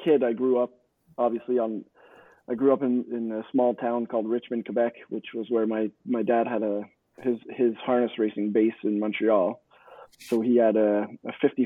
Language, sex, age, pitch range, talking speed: English, male, 20-39, 115-130 Hz, 195 wpm